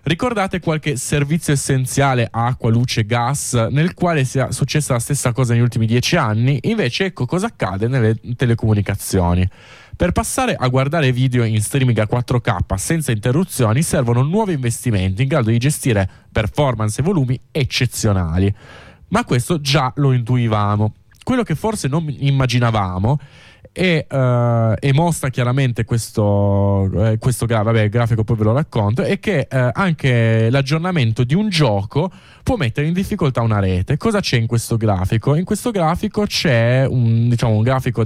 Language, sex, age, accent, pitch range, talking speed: Italian, male, 20-39, native, 110-145 Hz, 155 wpm